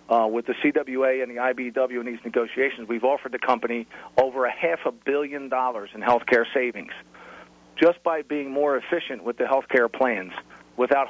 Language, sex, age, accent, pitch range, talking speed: English, male, 40-59, American, 110-130 Hz, 190 wpm